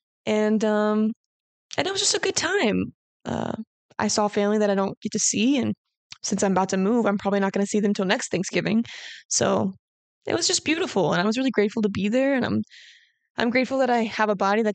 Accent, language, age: American, English, 20-39